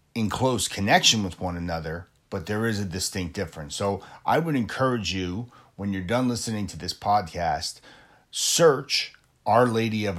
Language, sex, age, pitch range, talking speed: English, male, 40-59, 90-110 Hz, 165 wpm